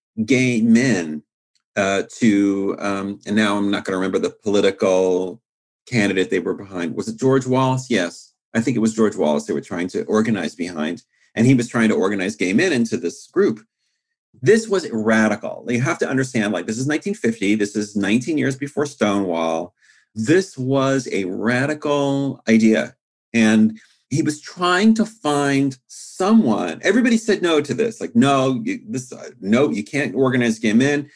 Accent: American